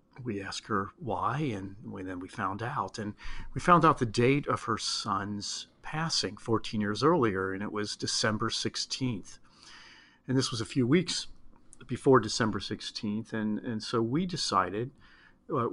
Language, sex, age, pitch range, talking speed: English, male, 40-59, 105-120 Hz, 170 wpm